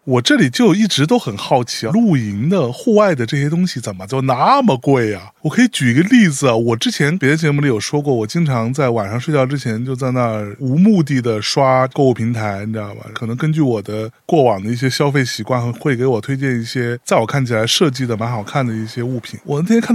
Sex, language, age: male, Chinese, 20-39